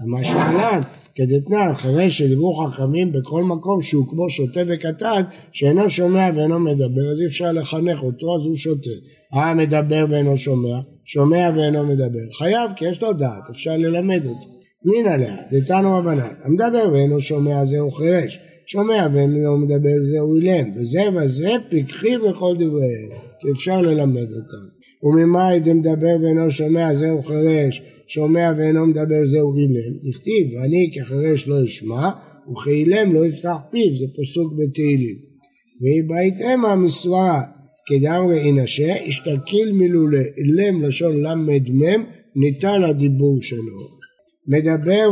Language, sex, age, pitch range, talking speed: Hebrew, male, 60-79, 140-175 Hz, 135 wpm